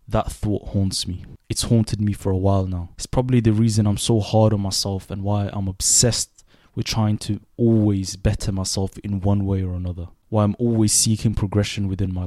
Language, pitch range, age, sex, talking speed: English, 95-110 Hz, 20-39, male, 205 wpm